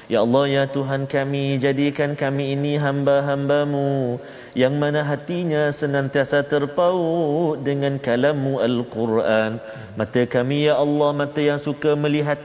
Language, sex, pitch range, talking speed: Malayalam, male, 120-145 Hz, 120 wpm